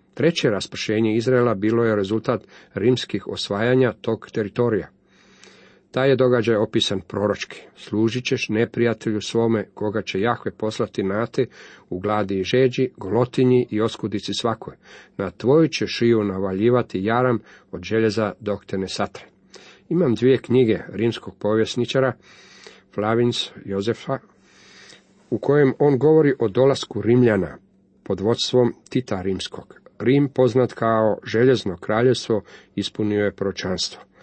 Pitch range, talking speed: 105-125 Hz, 125 wpm